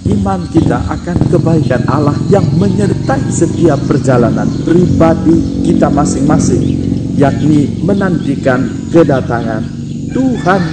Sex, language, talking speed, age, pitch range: male, Indonesian, 90 wpm, 50-69, 120-150 Hz